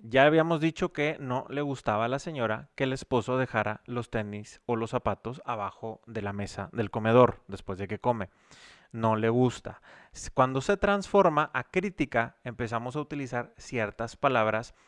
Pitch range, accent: 115-155 Hz, Mexican